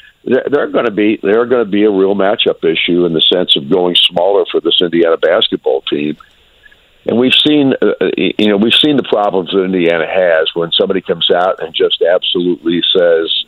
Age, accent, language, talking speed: 50-69, American, English, 195 wpm